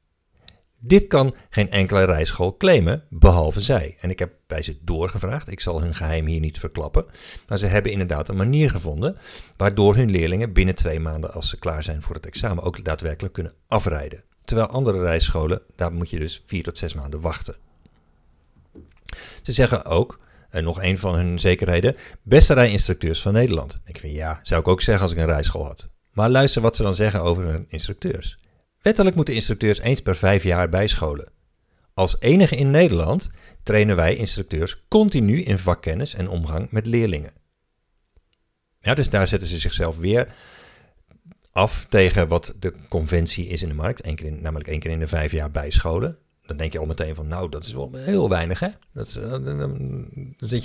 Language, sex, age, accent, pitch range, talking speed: Dutch, male, 50-69, Dutch, 80-105 Hz, 185 wpm